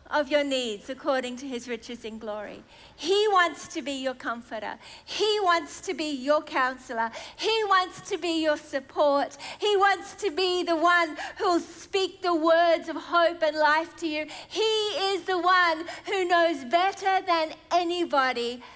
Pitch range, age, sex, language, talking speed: 275-350 Hz, 50-69, female, English, 170 wpm